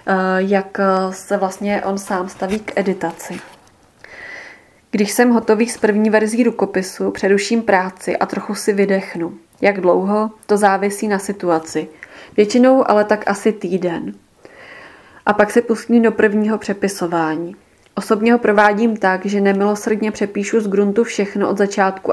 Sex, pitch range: female, 190-210 Hz